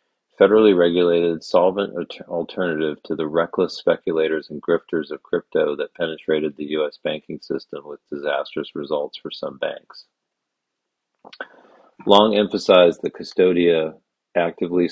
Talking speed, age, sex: 115 wpm, 40-59, male